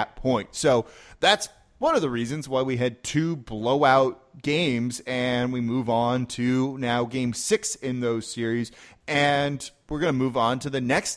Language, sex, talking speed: English, male, 175 wpm